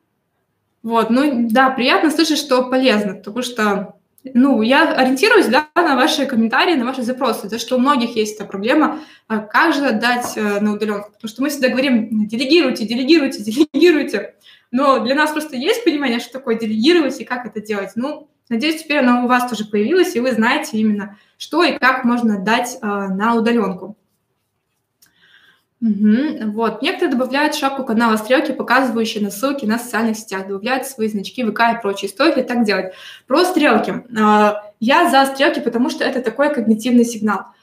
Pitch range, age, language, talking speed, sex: 220-275 Hz, 20-39, Russian, 170 wpm, female